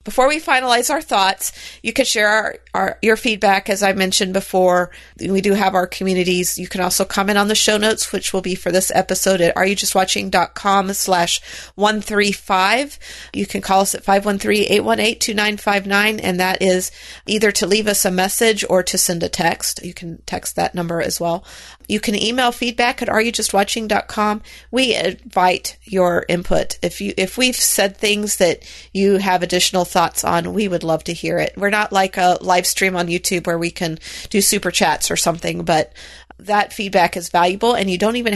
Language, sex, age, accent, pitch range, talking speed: English, female, 40-59, American, 180-210 Hz, 185 wpm